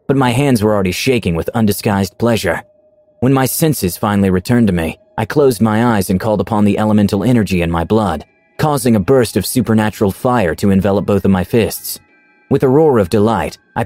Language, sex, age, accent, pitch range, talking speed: English, male, 30-49, American, 95-130 Hz, 205 wpm